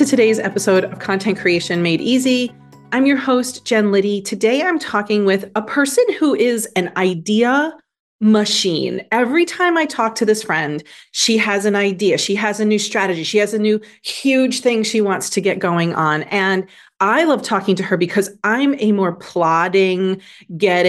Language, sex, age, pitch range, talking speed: English, female, 30-49, 190-240 Hz, 185 wpm